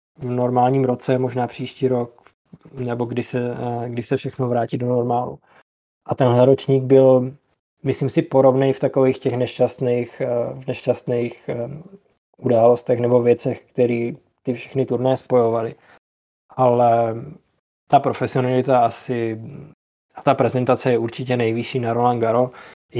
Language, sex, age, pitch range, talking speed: Czech, male, 20-39, 120-130 Hz, 130 wpm